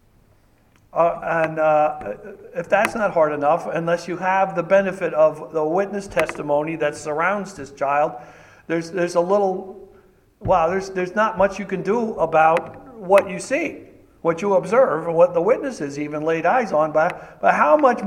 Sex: male